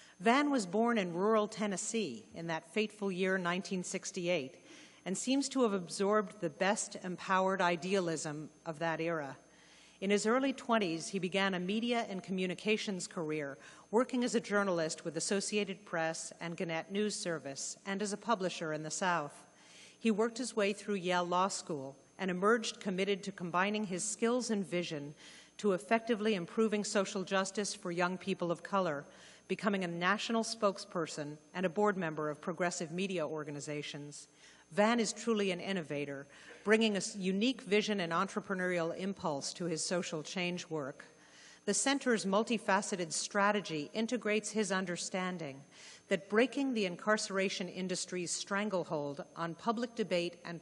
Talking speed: 150 wpm